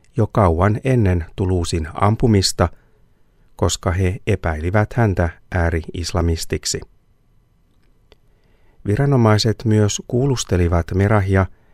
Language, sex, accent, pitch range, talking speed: Finnish, male, native, 85-110 Hz, 70 wpm